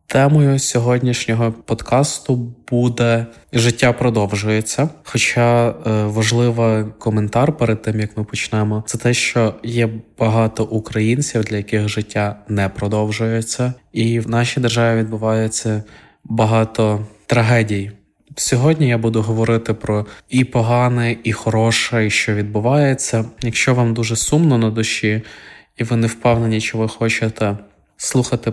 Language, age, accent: Ukrainian, 20-39, native